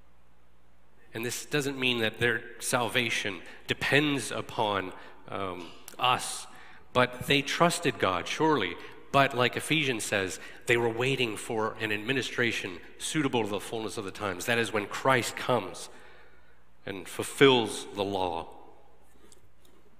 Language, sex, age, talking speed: English, male, 40-59, 125 wpm